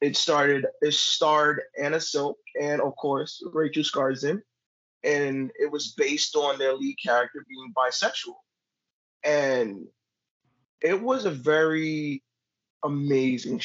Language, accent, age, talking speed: English, American, 20-39, 120 wpm